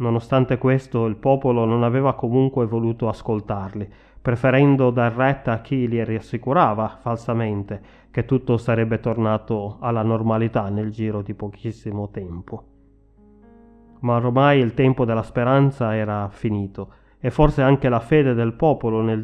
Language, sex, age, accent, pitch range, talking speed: Italian, male, 30-49, native, 110-130 Hz, 135 wpm